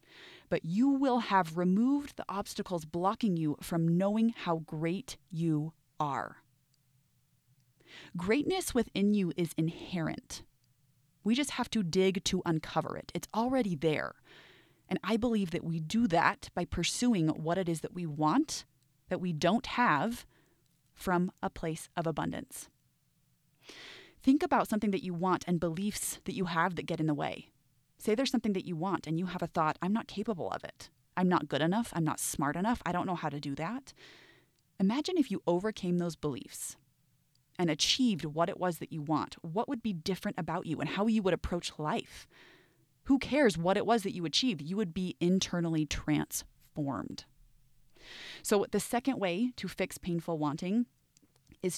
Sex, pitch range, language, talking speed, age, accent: female, 160-210 Hz, English, 175 wpm, 20-39, American